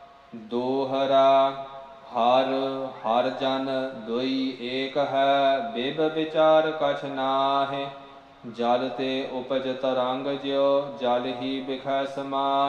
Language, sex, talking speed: English, male, 85 wpm